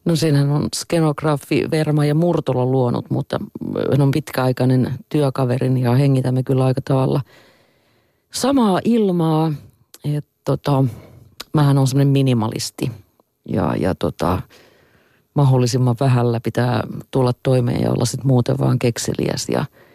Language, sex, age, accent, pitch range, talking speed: Finnish, female, 40-59, native, 125-155 Hz, 115 wpm